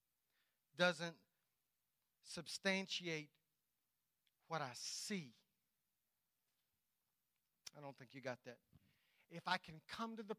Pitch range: 165-230 Hz